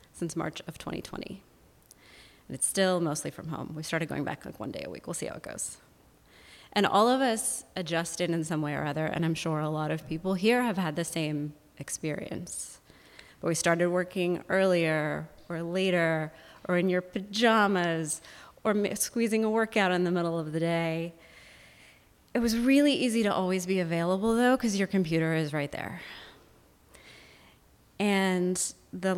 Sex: female